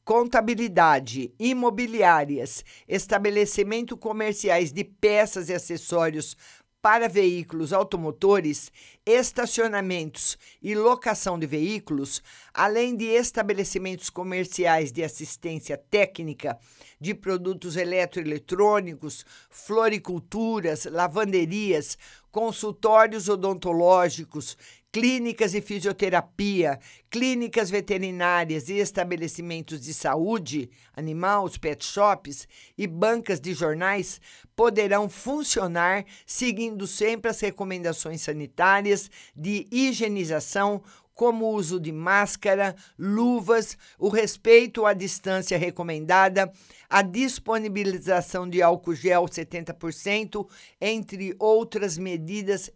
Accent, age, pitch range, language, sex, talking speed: Brazilian, 50-69, 165-215 Hz, Portuguese, male, 85 wpm